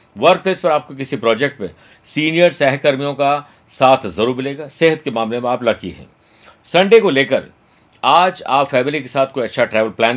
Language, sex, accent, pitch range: Hindi, male, native, 120-155 Hz